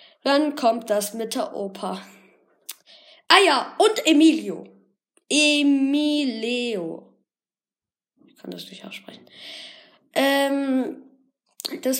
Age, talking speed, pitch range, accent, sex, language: 20-39, 90 wpm, 225-300 Hz, German, female, German